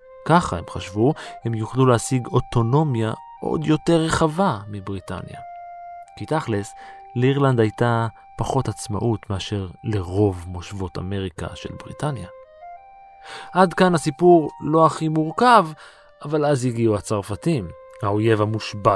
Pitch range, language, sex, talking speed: 105-155 Hz, Hebrew, male, 110 wpm